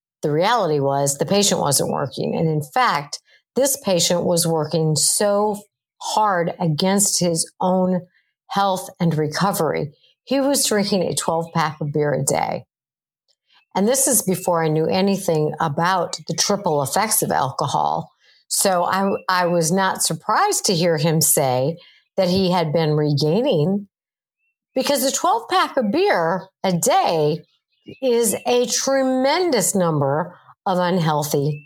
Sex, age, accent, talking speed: female, 50-69, American, 135 wpm